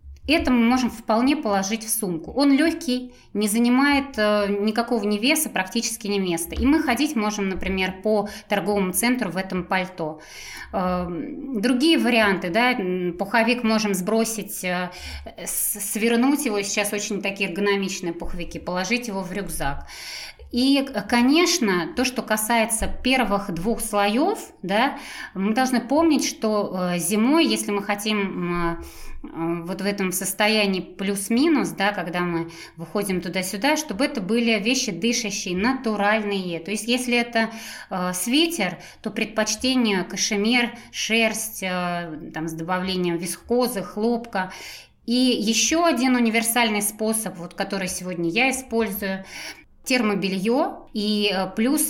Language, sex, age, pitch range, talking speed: Russian, female, 20-39, 190-245 Hz, 120 wpm